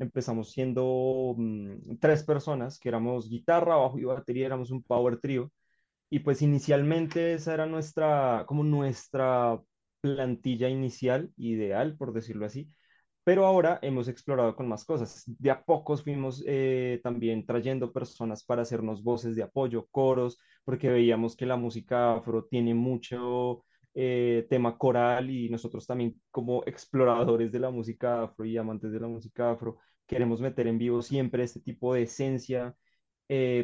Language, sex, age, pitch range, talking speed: Spanish, male, 20-39, 120-140 Hz, 155 wpm